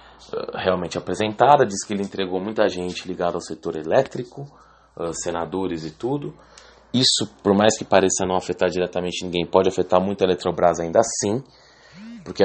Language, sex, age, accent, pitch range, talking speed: Portuguese, male, 20-39, Brazilian, 90-100 Hz, 155 wpm